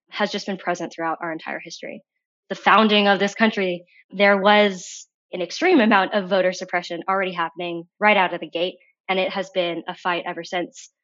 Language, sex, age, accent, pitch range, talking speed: English, female, 20-39, American, 175-200 Hz, 195 wpm